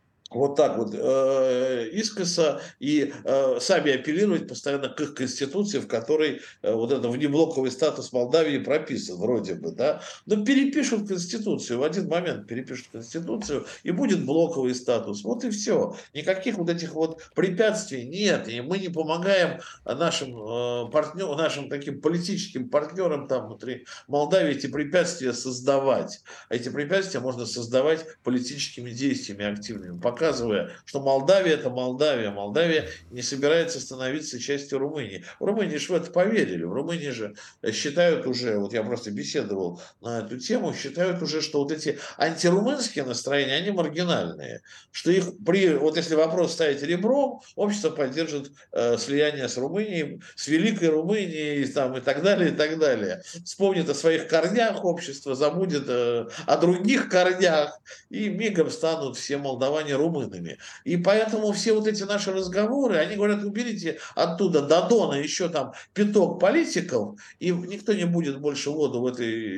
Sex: male